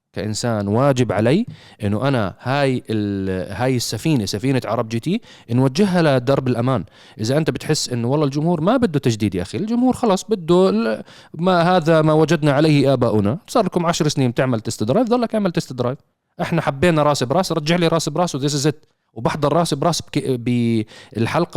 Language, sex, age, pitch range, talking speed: Arabic, male, 30-49, 120-170 Hz, 165 wpm